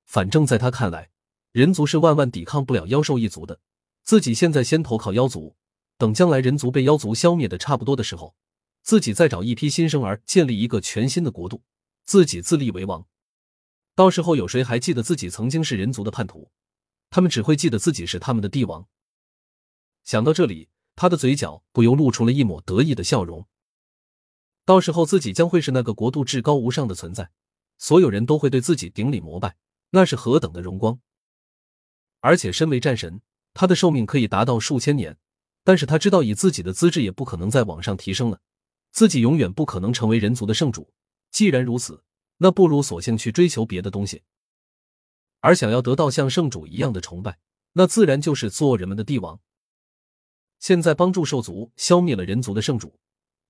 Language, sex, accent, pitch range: Chinese, male, native, 100-155 Hz